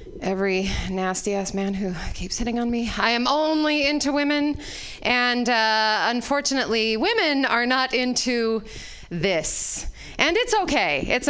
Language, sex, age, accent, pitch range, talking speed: English, female, 30-49, American, 220-315 Hz, 135 wpm